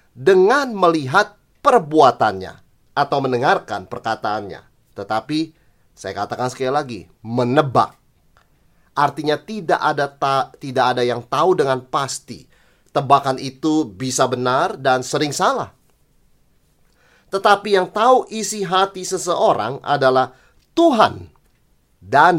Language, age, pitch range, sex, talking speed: Indonesian, 30-49, 130-195 Hz, male, 100 wpm